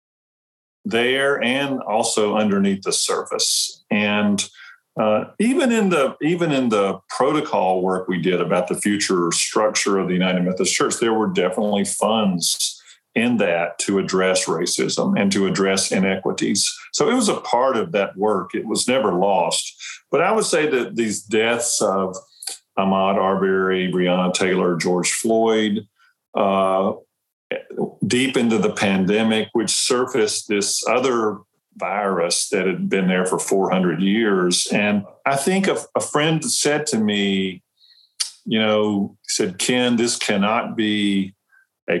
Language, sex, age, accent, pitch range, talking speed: English, male, 50-69, American, 95-115 Hz, 145 wpm